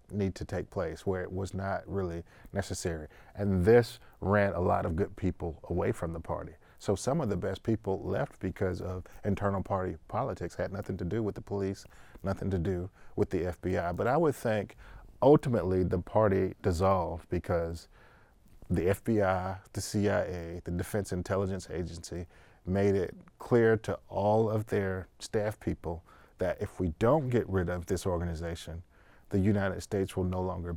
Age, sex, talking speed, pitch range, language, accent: 40-59, male, 170 wpm, 90-110 Hz, English, American